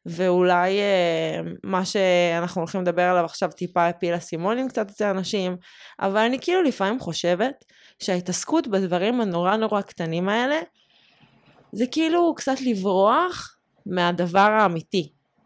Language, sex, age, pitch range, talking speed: Hebrew, female, 20-39, 180-225 Hz, 115 wpm